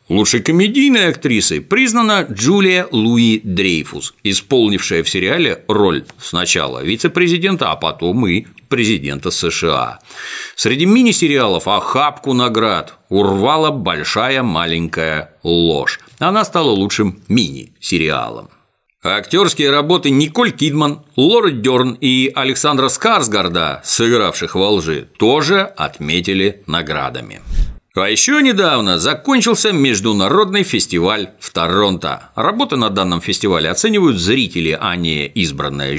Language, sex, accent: Russian, male, native